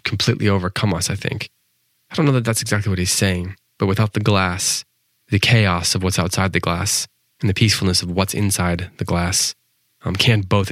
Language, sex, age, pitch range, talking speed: English, male, 20-39, 90-105 Hz, 200 wpm